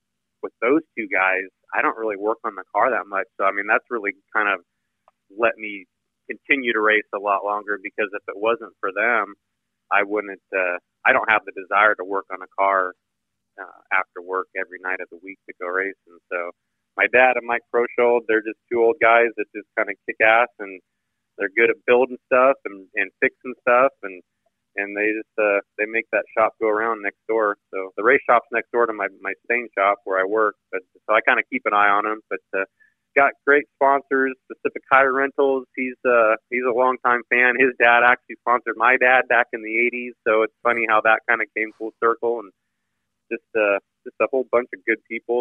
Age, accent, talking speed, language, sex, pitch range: 30-49, American, 215 wpm, English, male, 100-120 Hz